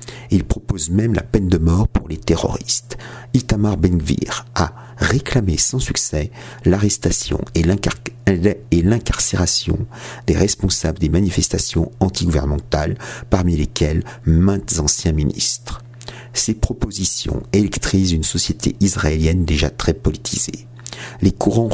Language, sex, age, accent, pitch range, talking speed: French, male, 50-69, French, 85-115 Hz, 115 wpm